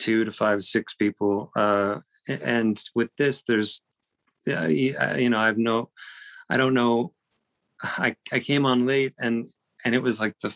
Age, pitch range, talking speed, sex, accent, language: 30-49, 110-125 Hz, 165 wpm, male, American, English